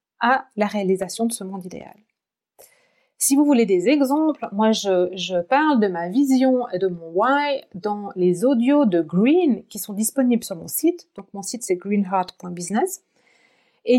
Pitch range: 200-275 Hz